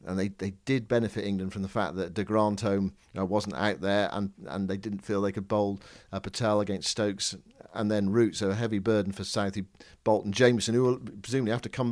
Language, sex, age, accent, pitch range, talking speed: English, male, 50-69, British, 105-125 Hz, 230 wpm